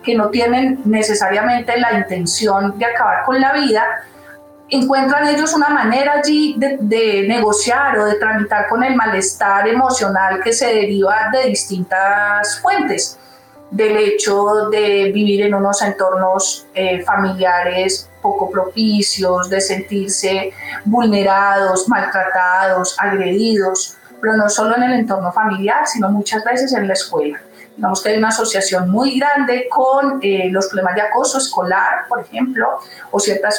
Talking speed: 140 wpm